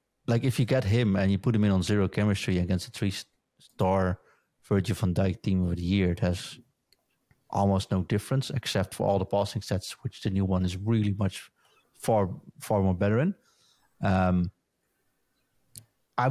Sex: male